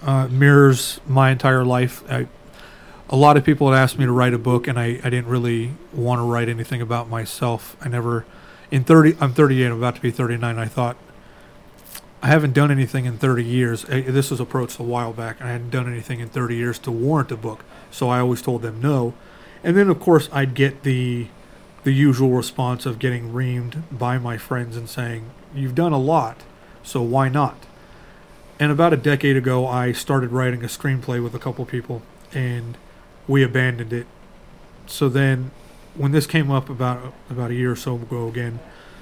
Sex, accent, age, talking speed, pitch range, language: male, American, 30-49, 200 wpm, 120-140 Hz, English